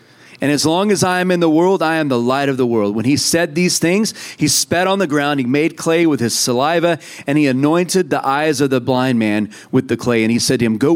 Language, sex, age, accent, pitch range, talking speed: English, male, 40-59, American, 125-160 Hz, 275 wpm